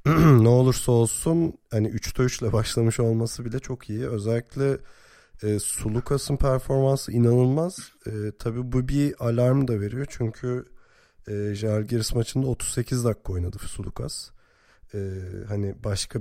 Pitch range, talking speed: 105-130 Hz, 125 wpm